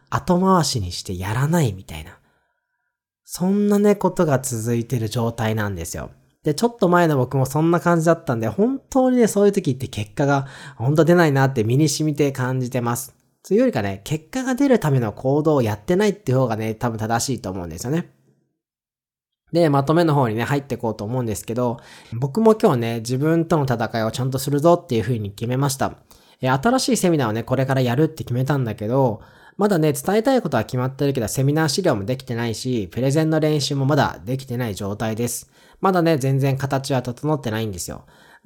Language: Japanese